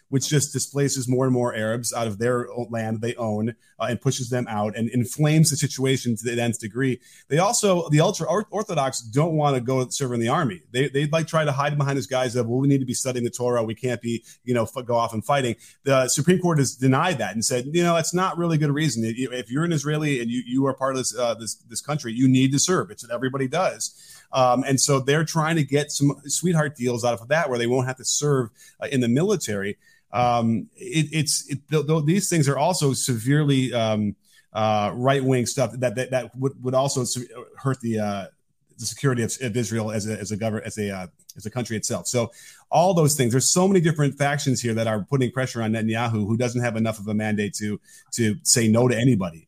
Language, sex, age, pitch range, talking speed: English, male, 30-49, 115-145 Hz, 245 wpm